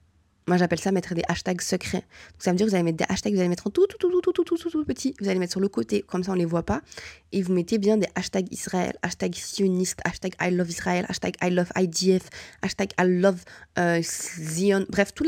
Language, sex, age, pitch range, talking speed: French, female, 20-39, 170-200 Hz, 245 wpm